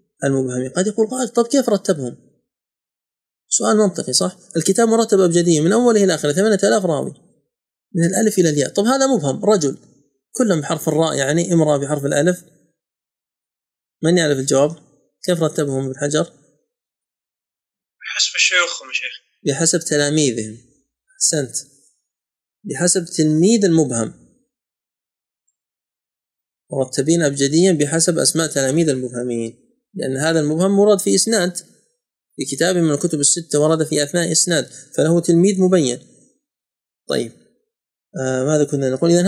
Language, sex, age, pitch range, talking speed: Arabic, male, 30-49, 145-200 Hz, 120 wpm